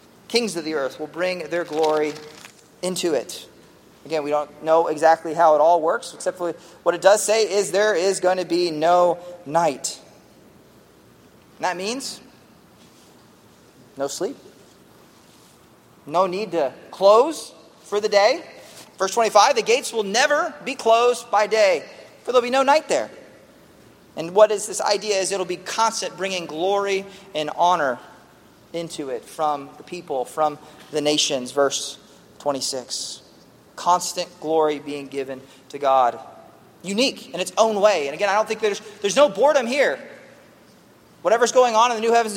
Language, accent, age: English, American, 30-49